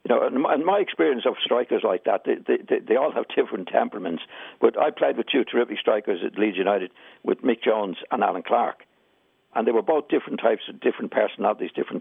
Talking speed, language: 205 wpm, English